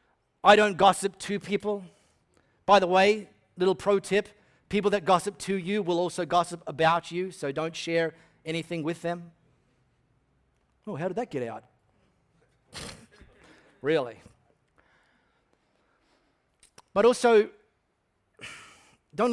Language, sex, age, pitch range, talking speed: English, male, 40-59, 160-210 Hz, 115 wpm